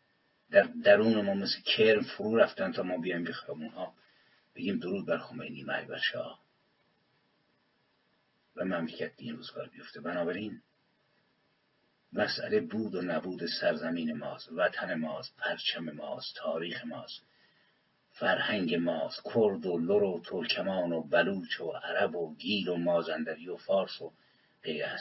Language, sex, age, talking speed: English, male, 50-69, 130 wpm